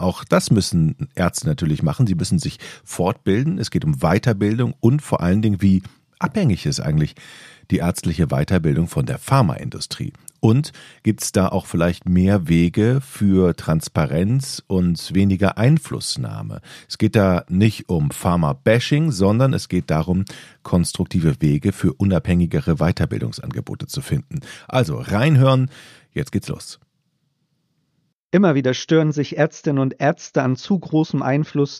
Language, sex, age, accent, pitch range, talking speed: German, male, 40-59, German, 115-155 Hz, 140 wpm